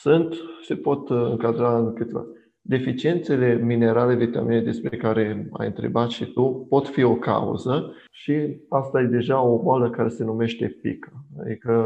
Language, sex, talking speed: Romanian, male, 150 wpm